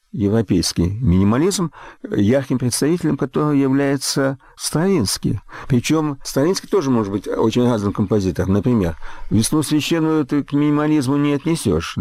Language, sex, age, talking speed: Russian, male, 50-69, 115 wpm